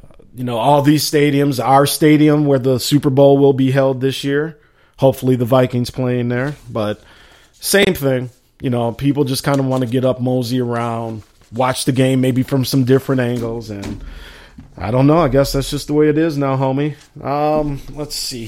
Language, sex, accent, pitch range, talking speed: English, male, American, 125-150 Hz, 200 wpm